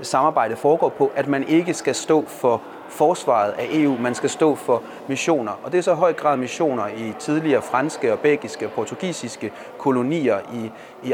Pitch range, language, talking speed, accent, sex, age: 125-165 Hz, Danish, 185 wpm, native, male, 30-49